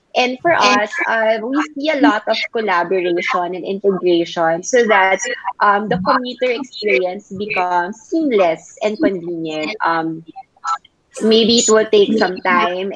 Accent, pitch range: Filipino, 175-220 Hz